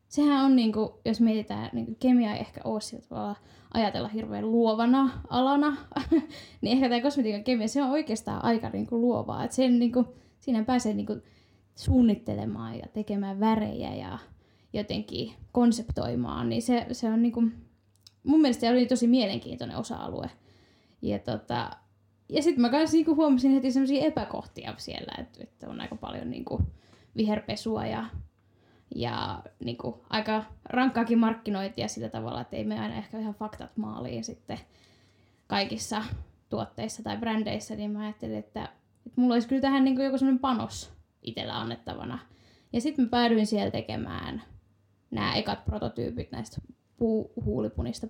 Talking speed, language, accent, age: 140 wpm, Finnish, native, 10-29